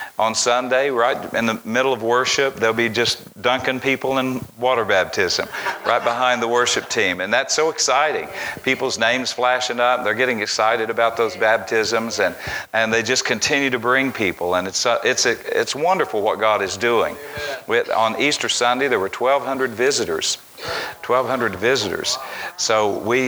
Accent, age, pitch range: American, 50-69, 110-130 Hz